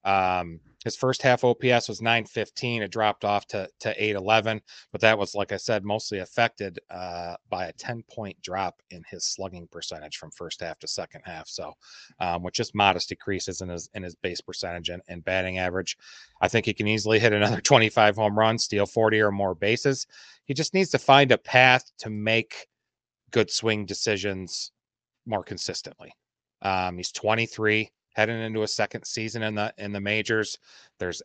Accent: American